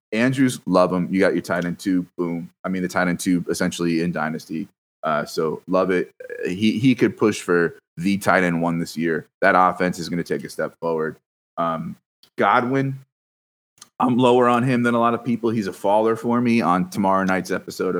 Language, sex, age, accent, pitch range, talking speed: English, male, 30-49, American, 90-125 Hz, 210 wpm